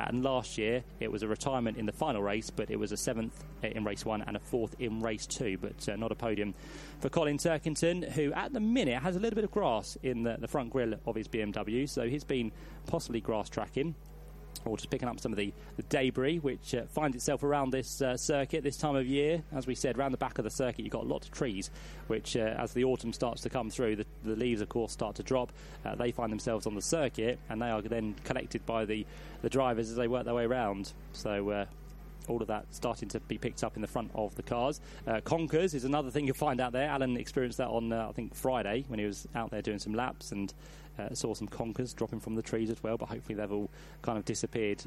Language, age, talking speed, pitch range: English, 30-49, 255 wpm, 110-140 Hz